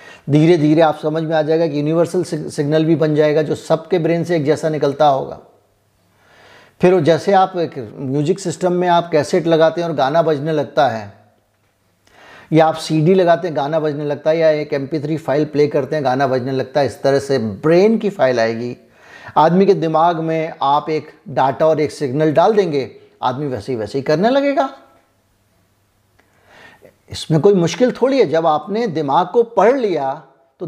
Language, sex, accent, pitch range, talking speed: Hindi, male, native, 130-165 Hz, 185 wpm